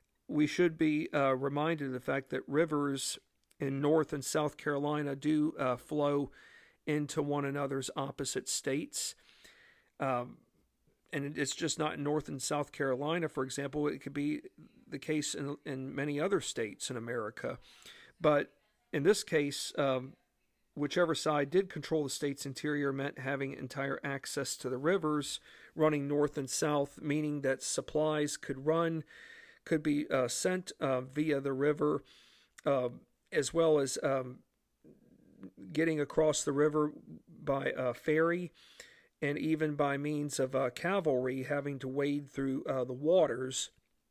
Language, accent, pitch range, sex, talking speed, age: English, American, 140-155 Hz, male, 150 wpm, 50-69